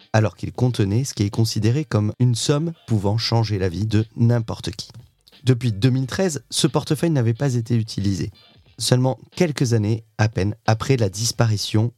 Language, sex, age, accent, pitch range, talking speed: French, male, 30-49, French, 105-130 Hz, 165 wpm